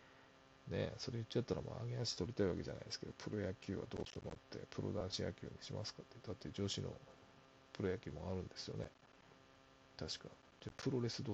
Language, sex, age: Japanese, male, 40-59